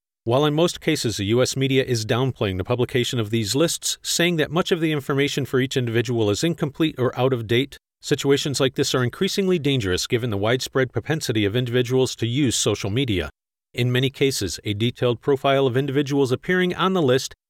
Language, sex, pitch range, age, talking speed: English, male, 120-150 Hz, 40-59, 195 wpm